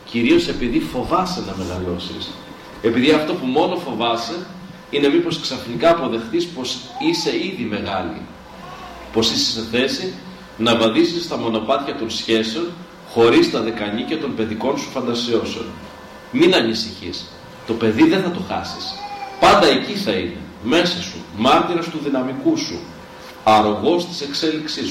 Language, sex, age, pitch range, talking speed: Greek, male, 40-59, 105-140 Hz, 135 wpm